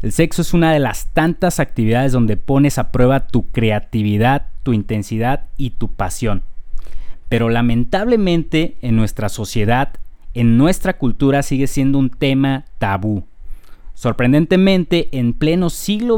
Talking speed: 135 wpm